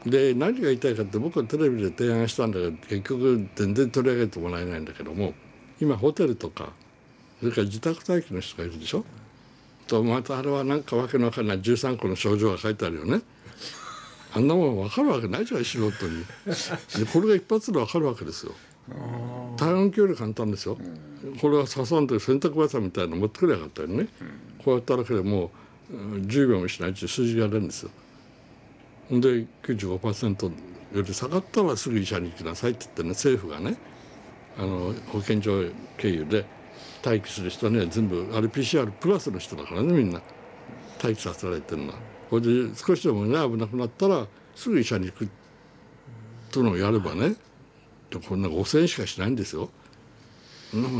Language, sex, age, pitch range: Japanese, male, 60-79, 100-130 Hz